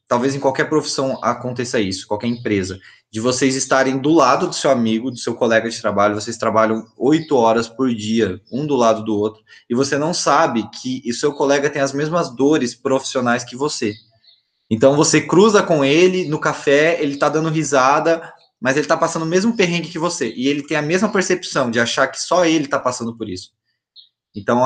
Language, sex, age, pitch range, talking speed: Portuguese, male, 20-39, 115-150 Hz, 200 wpm